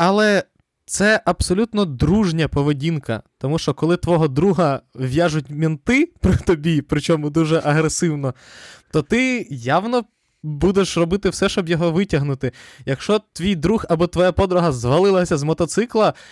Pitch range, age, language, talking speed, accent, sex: 130-180 Hz, 20-39, Ukrainian, 130 wpm, native, male